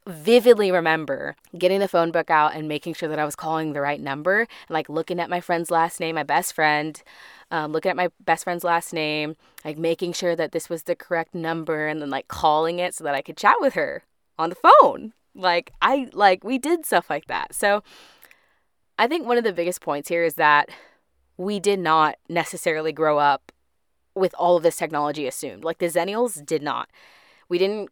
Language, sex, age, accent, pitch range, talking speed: English, female, 20-39, American, 155-190 Hz, 210 wpm